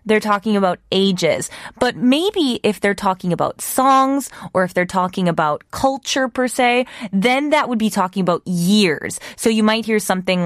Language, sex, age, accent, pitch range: Korean, female, 20-39, American, 185-260 Hz